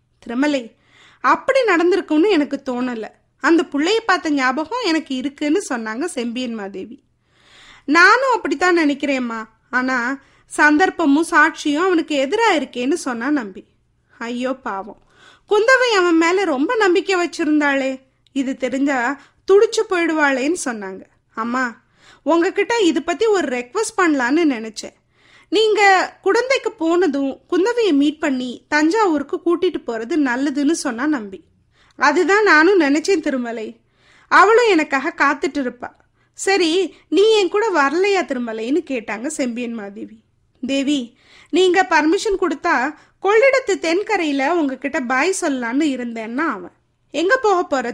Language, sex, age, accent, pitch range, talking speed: Tamil, female, 30-49, native, 265-365 Hz, 110 wpm